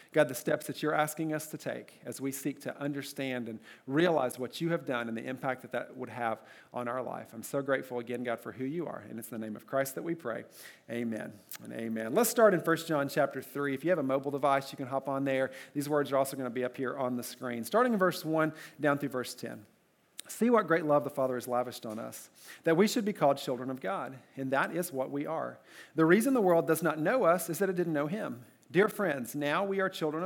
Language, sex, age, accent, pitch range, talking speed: English, male, 40-59, American, 130-170 Hz, 265 wpm